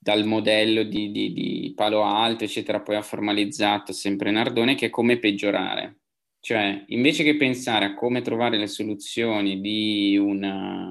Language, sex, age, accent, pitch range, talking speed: Italian, male, 20-39, native, 105-145 Hz, 155 wpm